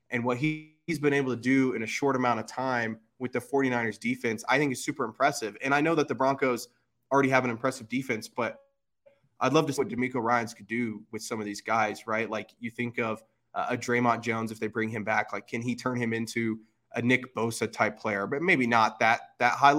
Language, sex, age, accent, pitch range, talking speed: English, male, 20-39, American, 115-130 Hz, 240 wpm